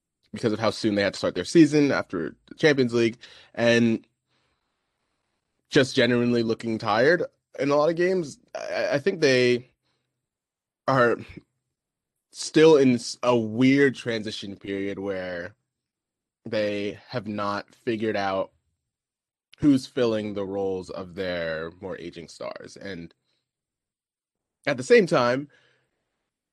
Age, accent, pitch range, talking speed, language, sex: 20-39, American, 100-135 Hz, 120 wpm, English, male